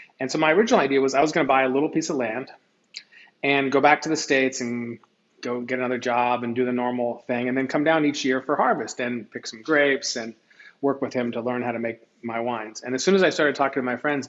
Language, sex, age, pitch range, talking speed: English, male, 40-59, 120-140 Hz, 275 wpm